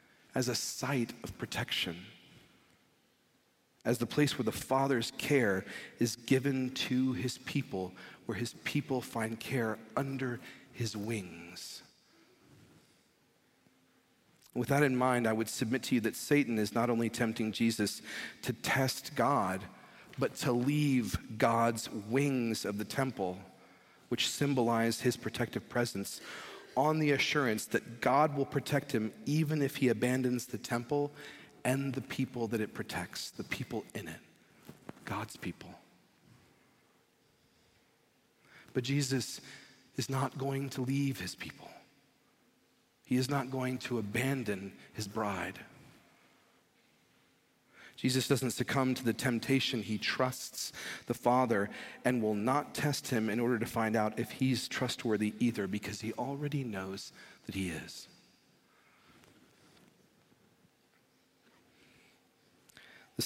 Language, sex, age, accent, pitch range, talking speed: English, male, 40-59, American, 110-135 Hz, 125 wpm